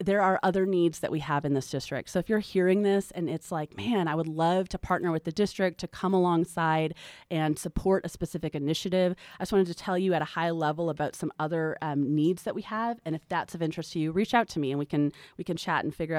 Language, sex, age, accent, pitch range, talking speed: English, female, 30-49, American, 155-185 Hz, 265 wpm